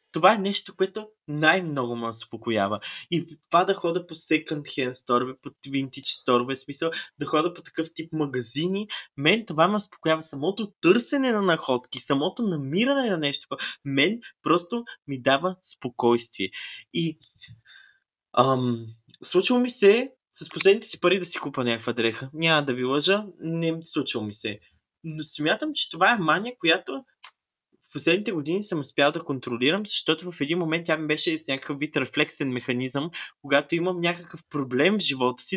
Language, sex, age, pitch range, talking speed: Bulgarian, male, 20-39, 135-175 Hz, 165 wpm